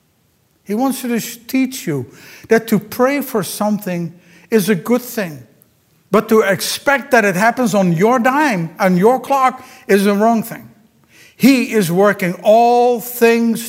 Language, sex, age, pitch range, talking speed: English, male, 60-79, 150-220 Hz, 155 wpm